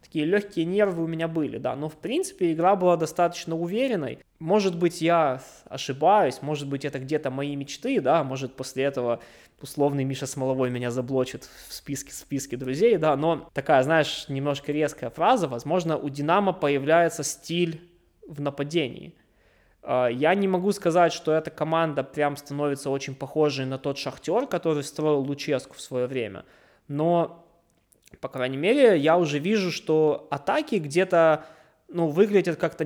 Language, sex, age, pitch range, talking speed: Russian, male, 20-39, 140-165 Hz, 155 wpm